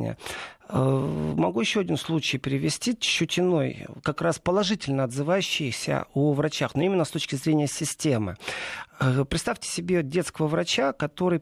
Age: 40-59